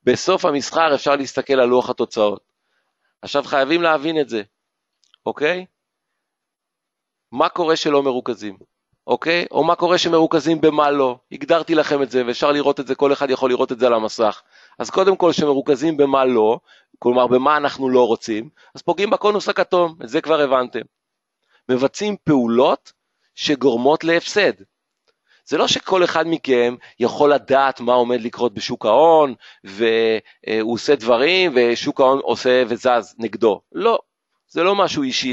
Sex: male